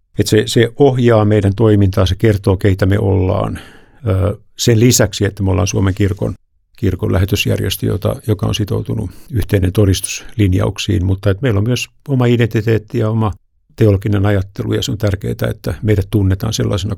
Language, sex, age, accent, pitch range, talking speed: Finnish, male, 50-69, native, 95-115 Hz, 165 wpm